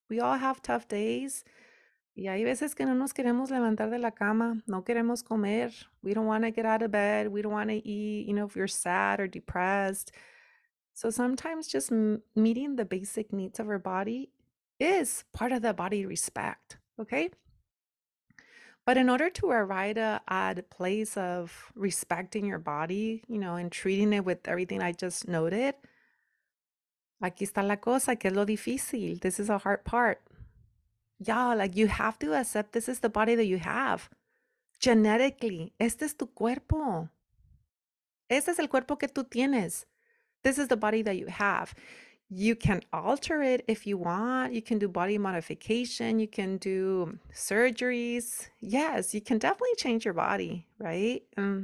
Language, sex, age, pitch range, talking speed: English, female, 30-49, 195-245 Hz, 170 wpm